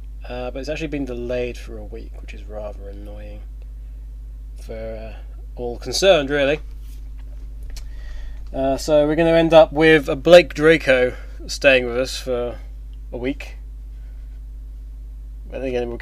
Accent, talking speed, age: British, 140 wpm, 20-39